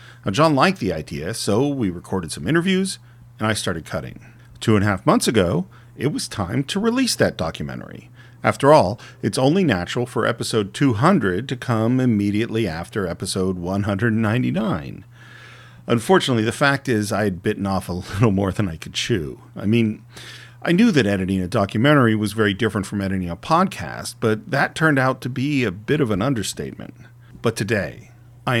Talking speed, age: 180 wpm, 40-59